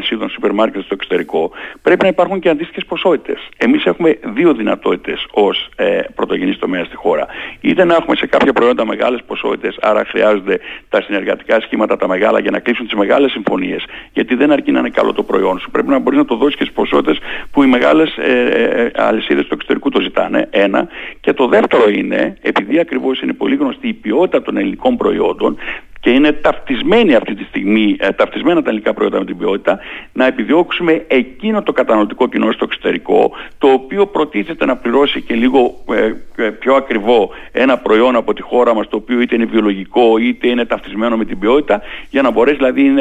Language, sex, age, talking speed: Greek, male, 60-79, 190 wpm